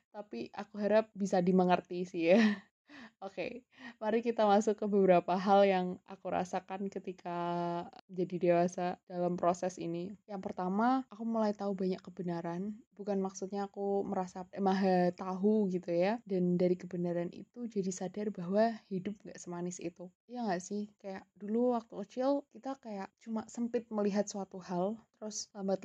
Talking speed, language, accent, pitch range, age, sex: 155 wpm, Indonesian, native, 180-210 Hz, 20-39, female